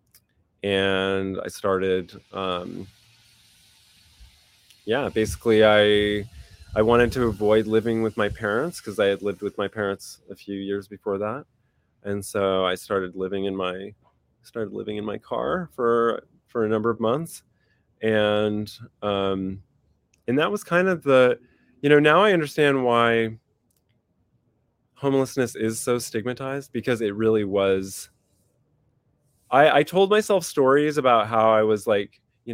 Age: 20-39